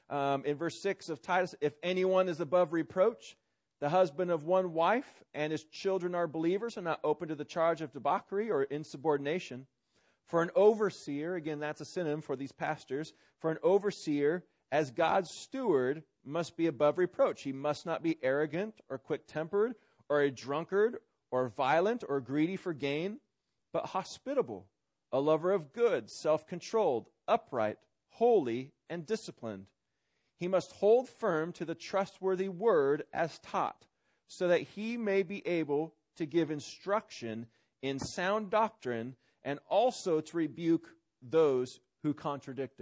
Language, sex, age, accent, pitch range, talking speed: English, male, 40-59, American, 140-185 Hz, 150 wpm